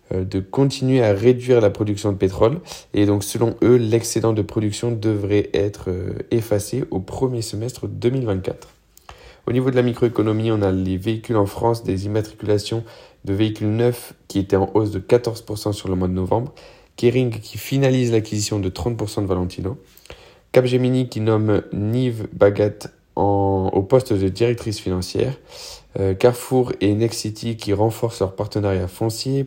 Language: French